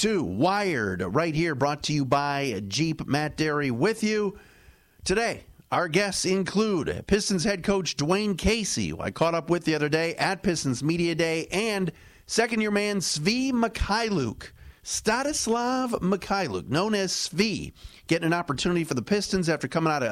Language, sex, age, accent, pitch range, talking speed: English, male, 40-59, American, 130-180 Hz, 160 wpm